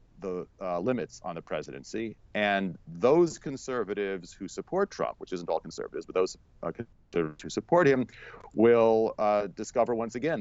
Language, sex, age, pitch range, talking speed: English, male, 40-59, 85-110 Hz, 155 wpm